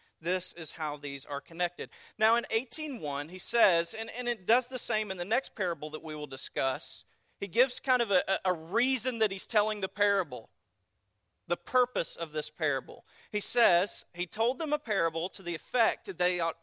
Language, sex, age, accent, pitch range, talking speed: English, male, 40-59, American, 170-235 Hz, 200 wpm